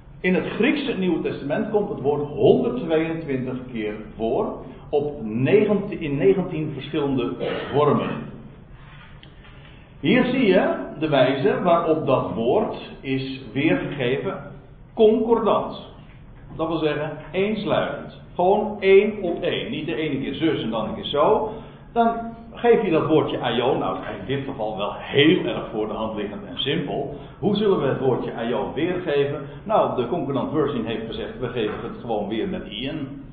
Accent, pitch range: Dutch, 125-165 Hz